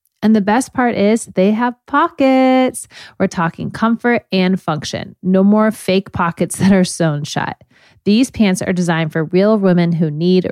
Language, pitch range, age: English, 170-215 Hz, 30-49